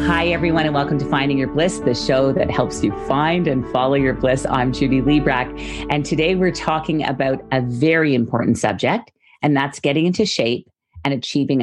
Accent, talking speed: American, 190 wpm